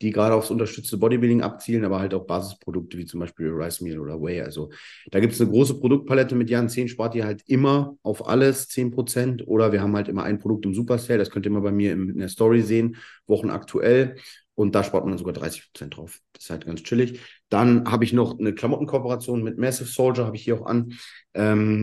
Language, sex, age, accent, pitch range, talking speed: German, male, 30-49, German, 95-120 Hz, 230 wpm